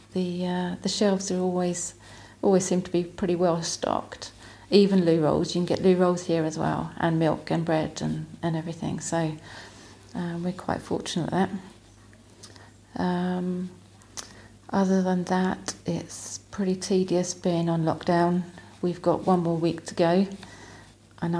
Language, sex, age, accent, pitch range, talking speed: English, female, 40-59, British, 115-180 Hz, 155 wpm